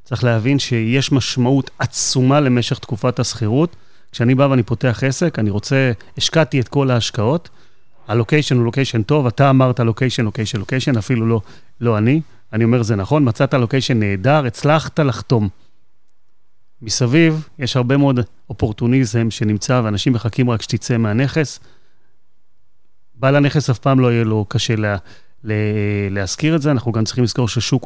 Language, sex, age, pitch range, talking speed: Hebrew, male, 30-49, 110-140 Hz, 150 wpm